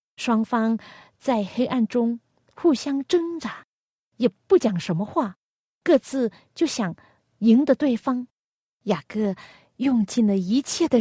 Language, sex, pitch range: Chinese, female, 195-265 Hz